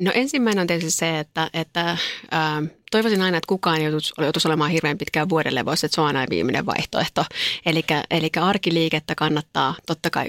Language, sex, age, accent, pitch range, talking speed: Finnish, female, 30-49, native, 150-175 Hz, 175 wpm